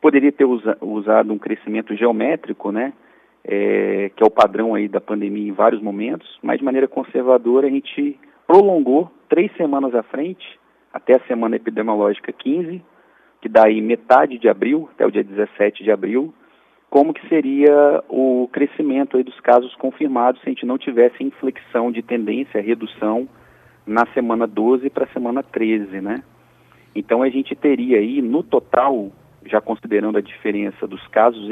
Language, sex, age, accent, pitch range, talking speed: Portuguese, male, 40-59, Brazilian, 110-140 Hz, 160 wpm